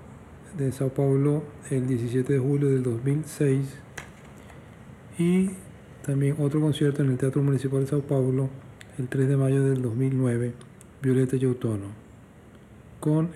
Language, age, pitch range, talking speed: Spanish, 40-59, 125-140 Hz, 135 wpm